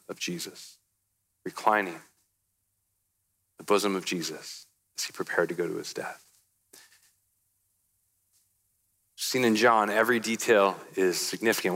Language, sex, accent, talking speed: English, male, American, 110 wpm